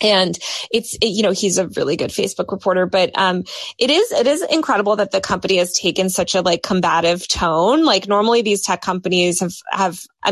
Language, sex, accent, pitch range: English, female, American, 175-215 Hz